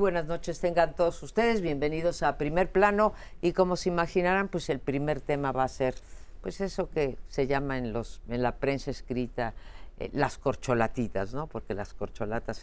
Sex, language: female, Spanish